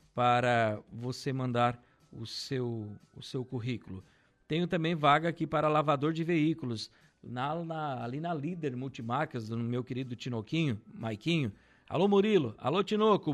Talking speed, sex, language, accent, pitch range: 140 wpm, male, Portuguese, Brazilian, 125-155 Hz